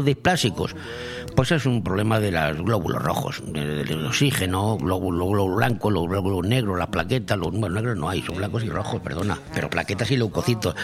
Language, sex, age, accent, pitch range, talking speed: Spanish, male, 60-79, Spanish, 105-140 Hz, 195 wpm